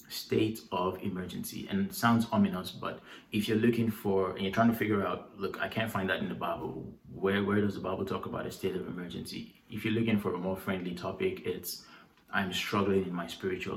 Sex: male